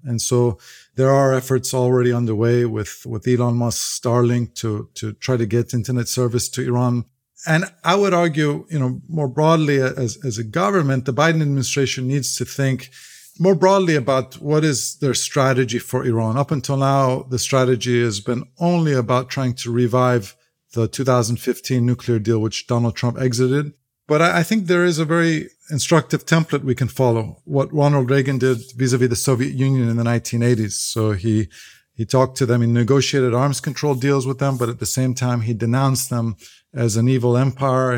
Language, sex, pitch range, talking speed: English, male, 120-140 Hz, 185 wpm